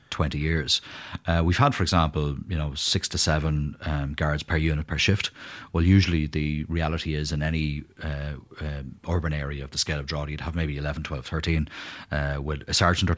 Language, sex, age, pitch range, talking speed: English, male, 30-49, 75-90 Hz, 205 wpm